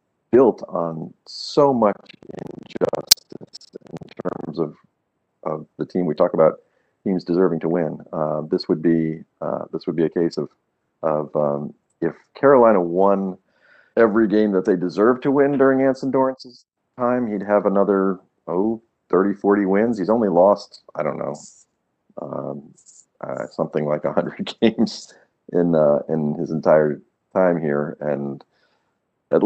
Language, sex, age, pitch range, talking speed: English, male, 40-59, 75-100 Hz, 150 wpm